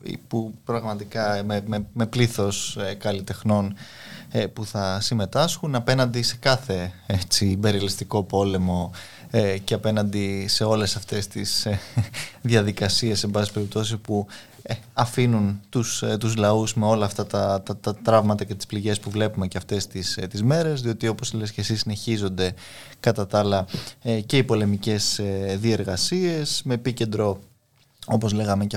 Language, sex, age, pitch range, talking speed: Greek, male, 20-39, 105-120 Hz, 130 wpm